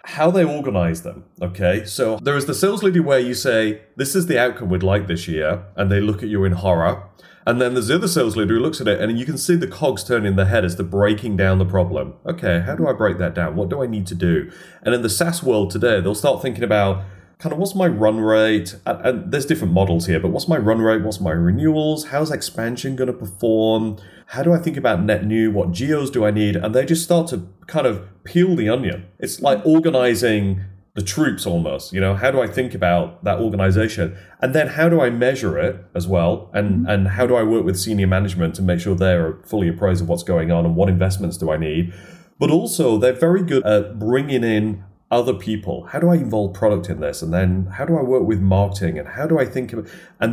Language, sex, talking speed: English, male, 245 wpm